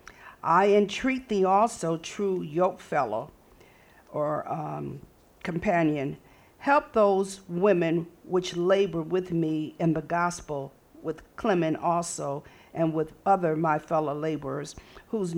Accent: American